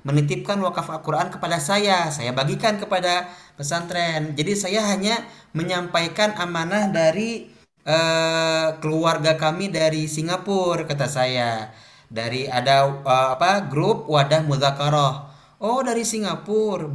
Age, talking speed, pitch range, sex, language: 20-39, 115 wpm, 135-160 Hz, male, Malay